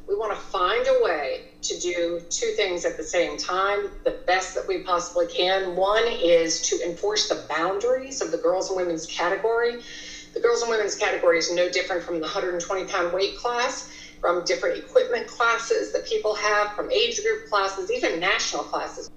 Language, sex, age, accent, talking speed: English, female, 50-69, American, 185 wpm